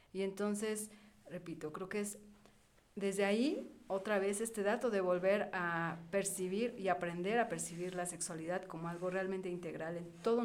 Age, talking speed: 40-59, 160 wpm